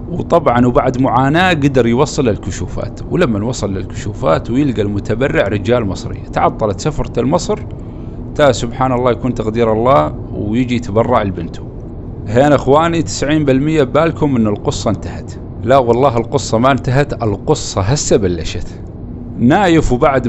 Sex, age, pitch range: male, 40-59, 110-135 Hz